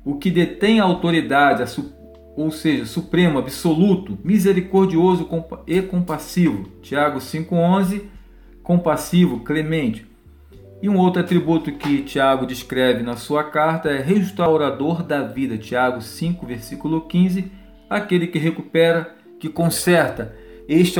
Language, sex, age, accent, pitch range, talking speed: Portuguese, male, 40-59, Brazilian, 130-170 Hz, 110 wpm